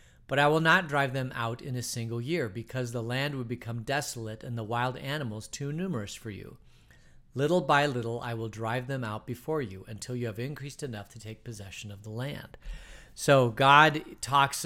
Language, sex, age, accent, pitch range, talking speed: English, male, 40-59, American, 120-155 Hz, 200 wpm